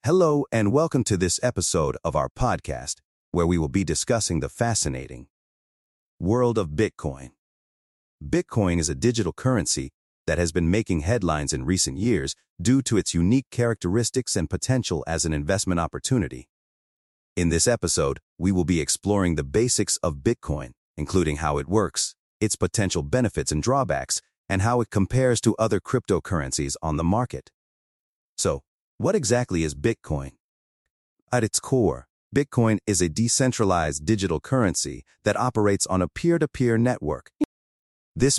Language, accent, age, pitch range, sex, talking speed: English, American, 40-59, 75-115 Hz, male, 145 wpm